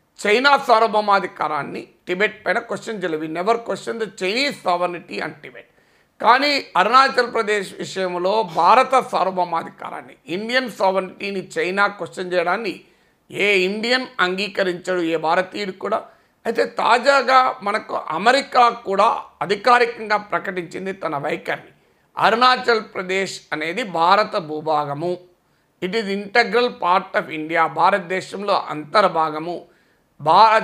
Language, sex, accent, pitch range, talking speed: Telugu, male, native, 180-230 Hz, 100 wpm